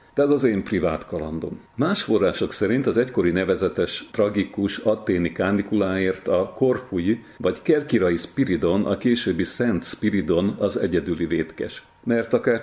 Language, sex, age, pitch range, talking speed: Hungarian, male, 50-69, 95-125 Hz, 140 wpm